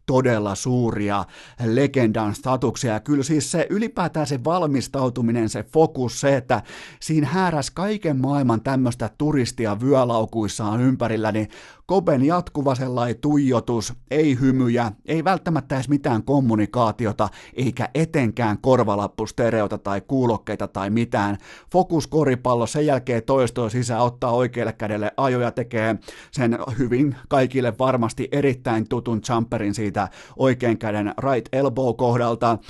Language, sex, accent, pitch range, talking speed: Finnish, male, native, 110-135 Hz, 120 wpm